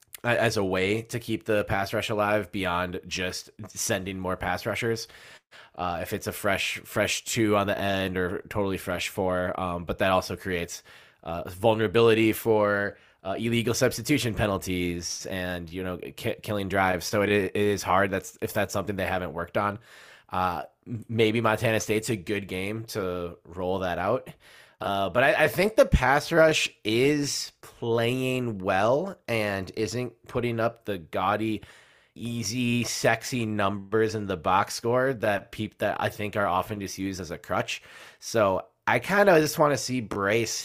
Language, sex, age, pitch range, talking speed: English, male, 20-39, 95-115 Hz, 170 wpm